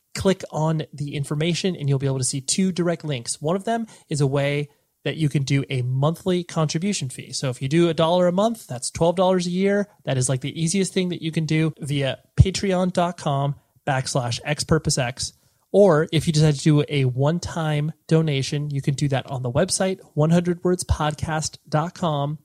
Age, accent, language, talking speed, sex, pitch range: 30-49, American, English, 185 wpm, male, 135-170 Hz